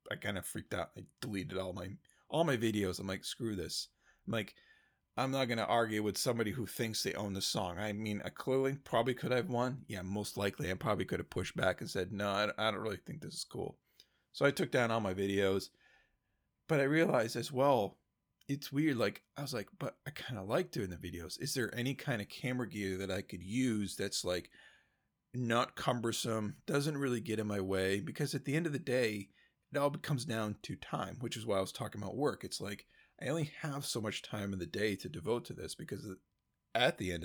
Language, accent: English, American